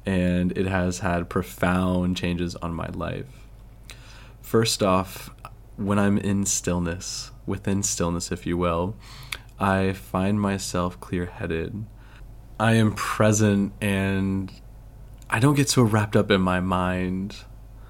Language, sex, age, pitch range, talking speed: English, male, 20-39, 90-110 Hz, 125 wpm